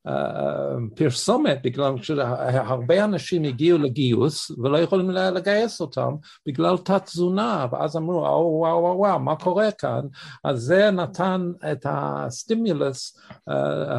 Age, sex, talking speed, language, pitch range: 60-79, male, 120 wpm, Hebrew, 120-165 Hz